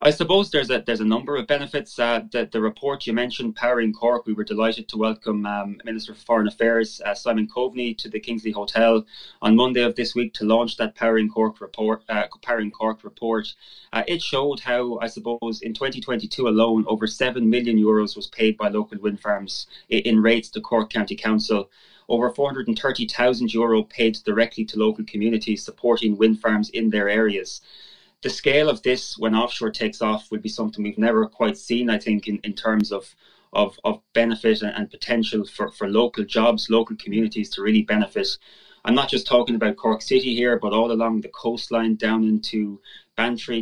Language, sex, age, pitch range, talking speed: English, male, 20-39, 110-120 Hz, 185 wpm